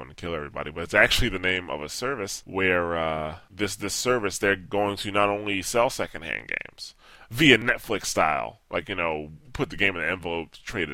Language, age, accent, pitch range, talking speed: English, 10-29, American, 90-110 Hz, 205 wpm